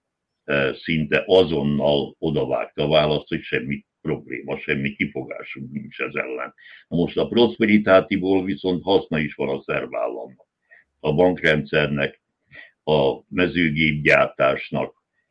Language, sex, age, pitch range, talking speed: Hungarian, male, 60-79, 75-90 Hz, 100 wpm